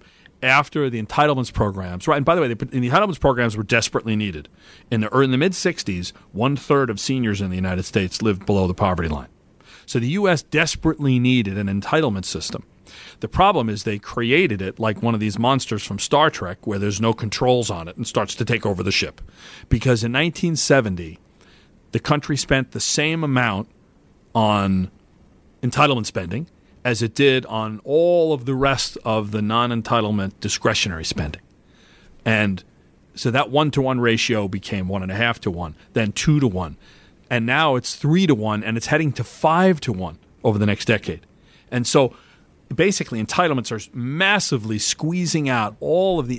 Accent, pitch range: American, 100-140 Hz